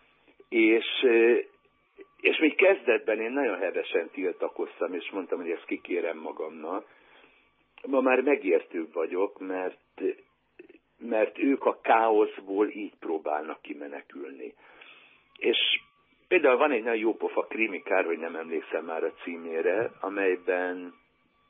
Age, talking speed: 60-79, 110 wpm